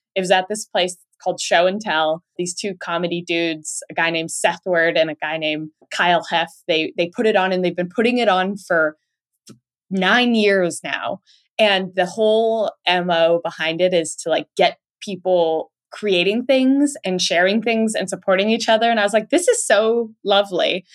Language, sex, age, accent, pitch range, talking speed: English, female, 20-39, American, 170-220 Hz, 190 wpm